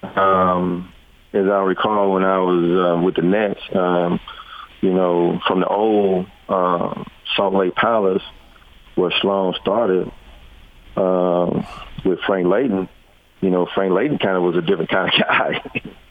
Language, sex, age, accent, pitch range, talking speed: English, male, 40-59, American, 85-95 Hz, 150 wpm